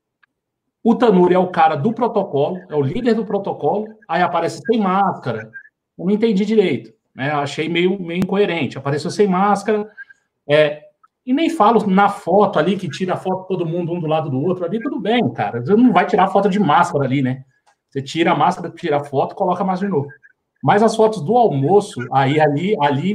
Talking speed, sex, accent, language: 205 wpm, male, Brazilian, Portuguese